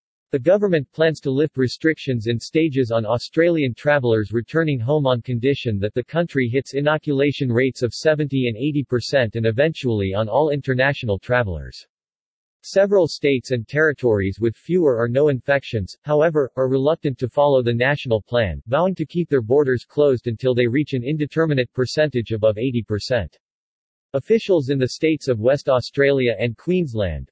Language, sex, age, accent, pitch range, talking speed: English, male, 50-69, American, 120-150 Hz, 155 wpm